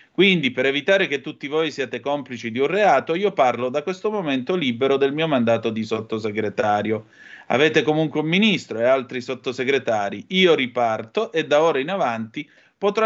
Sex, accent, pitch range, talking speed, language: male, native, 120-160 Hz, 170 wpm, Italian